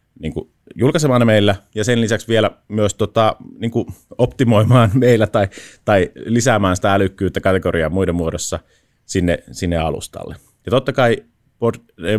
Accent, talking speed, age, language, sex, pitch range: native, 140 wpm, 30-49, Finnish, male, 90-115 Hz